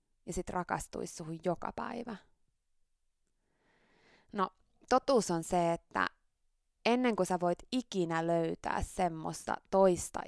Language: Finnish